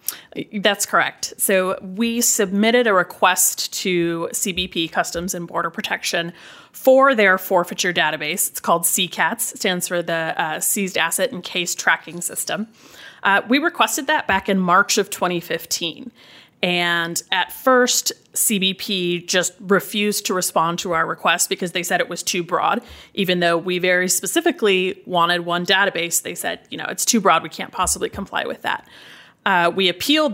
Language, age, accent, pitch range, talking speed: English, 30-49, American, 175-210 Hz, 160 wpm